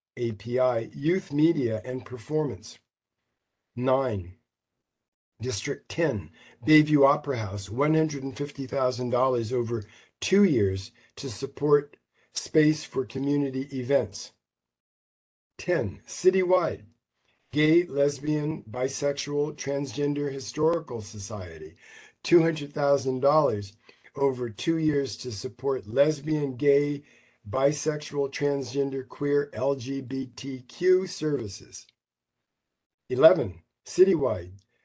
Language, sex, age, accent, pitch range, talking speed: English, male, 50-69, American, 125-150 Hz, 75 wpm